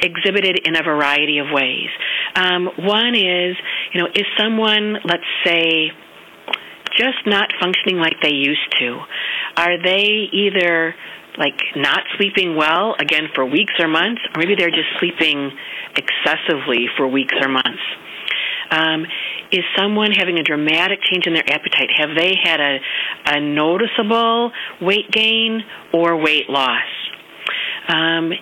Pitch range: 155-200 Hz